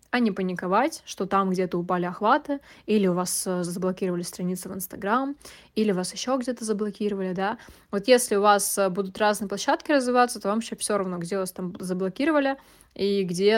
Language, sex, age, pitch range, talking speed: Russian, female, 20-39, 185-210 Hz, 175 wpm